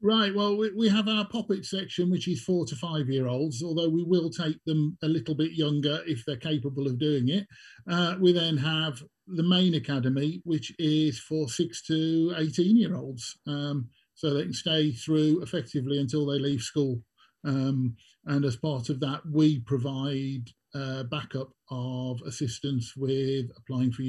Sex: male